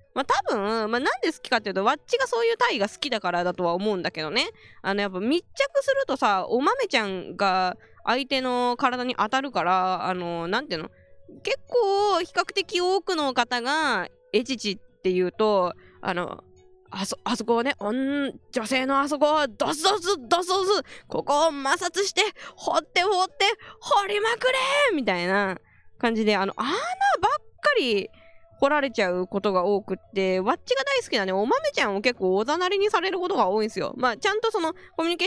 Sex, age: female, 20-39